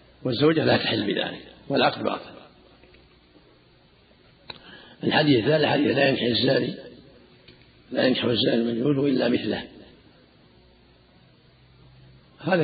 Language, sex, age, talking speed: Arabic, male, 60-79, 85 wpm